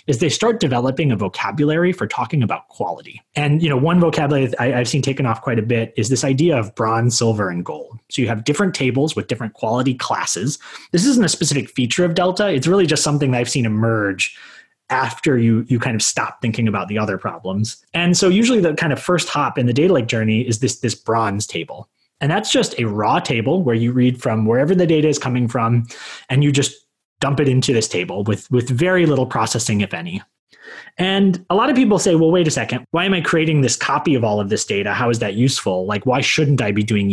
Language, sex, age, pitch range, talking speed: English, male, 20-39, 115-160 Hz, 240 wpm